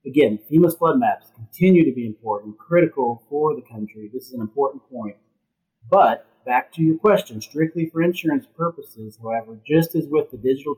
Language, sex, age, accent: English, male, 30-49, American